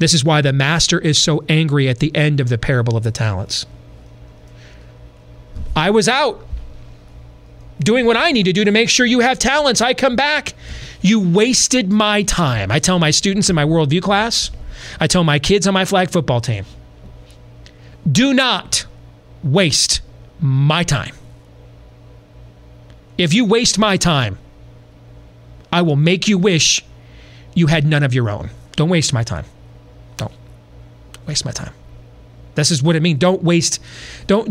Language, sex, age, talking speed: English, male, 30-49, 160 wpm